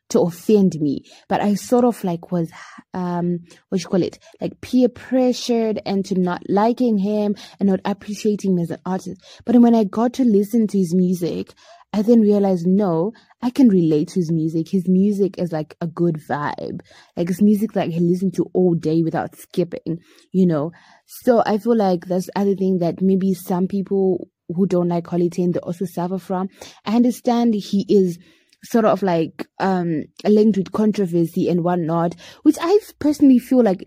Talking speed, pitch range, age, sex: 190 wpm, 175-225 Hz, 20-39, female